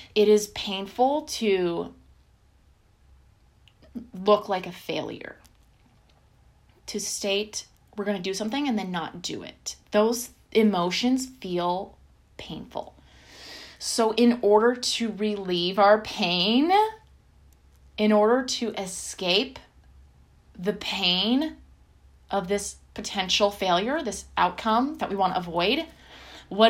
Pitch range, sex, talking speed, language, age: 185-240 Hz, female, 110 wpm, English, 20-39